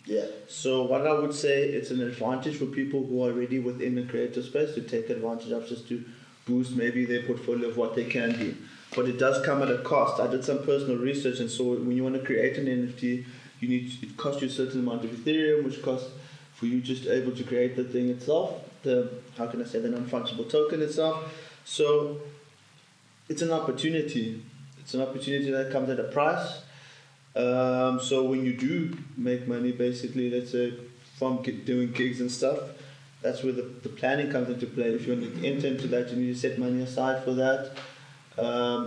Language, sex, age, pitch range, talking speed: English, male, 20-39, 125-140 Hz, 210 wpm